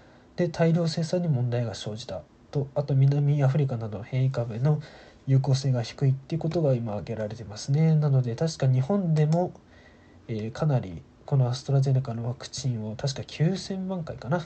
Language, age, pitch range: Japanese, 20-39, 115-150 Hz